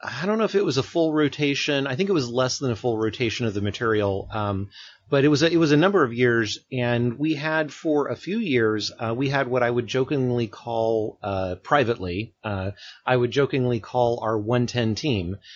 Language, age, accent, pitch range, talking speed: English, 30-49, American, 110-140 Hz, 220 wpm